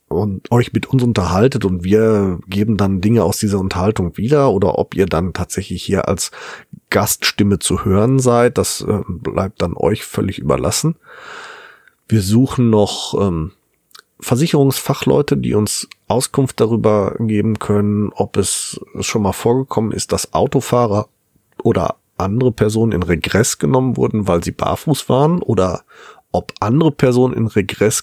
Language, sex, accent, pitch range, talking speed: German, male, German, 100-135 Hz, 140 wpm